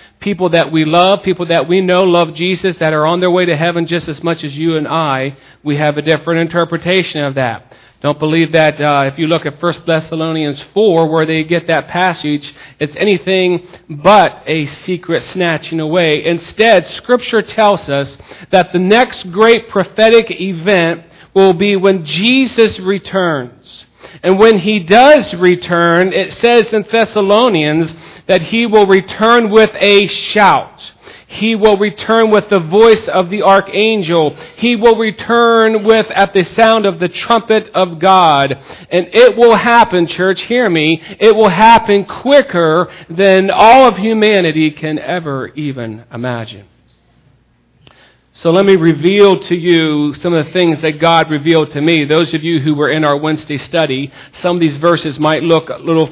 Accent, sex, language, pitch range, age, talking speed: American, male, English, 155-200 Hz, 40-59, 170 wpm